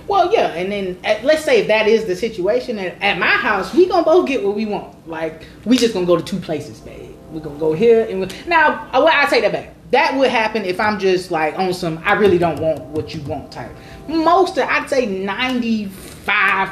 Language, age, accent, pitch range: English, 20-39, American, 170-245 Hz